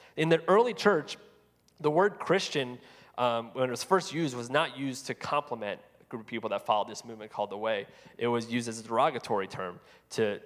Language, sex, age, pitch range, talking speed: English, male, 30-49, 140-205 Hz, 210 wpm